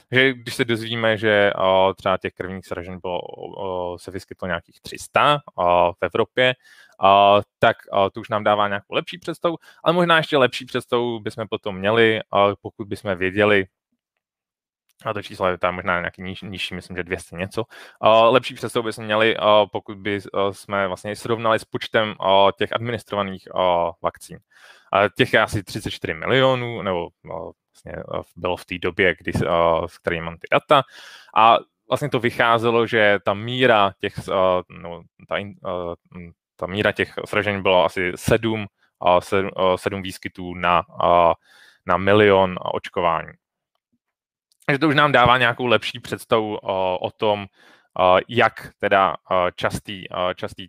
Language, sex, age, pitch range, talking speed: Czech, male, 20-39, 95-115 Hz, 150 wpm